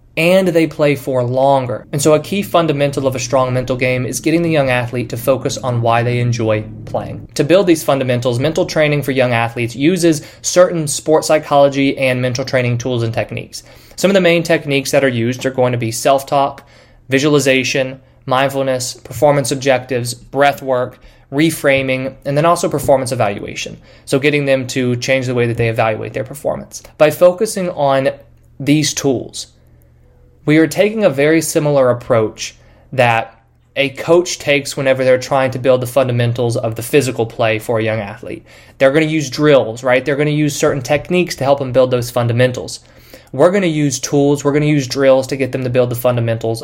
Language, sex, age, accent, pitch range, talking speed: English, male, 20-39, American, 125-150 Hz, 190 wpm